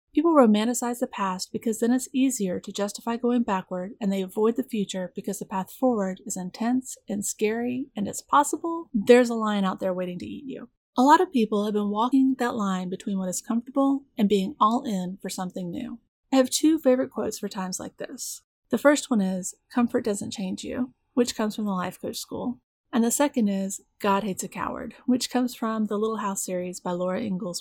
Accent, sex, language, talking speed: American, female, English, 215 wpm